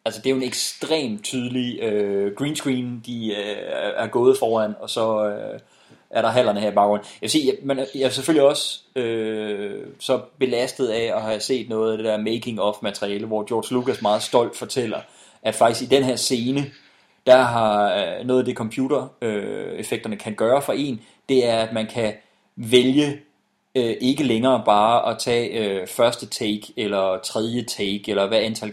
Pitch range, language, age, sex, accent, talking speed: 110-130 Hz, English, 30-49, male, Danish, 180 wpm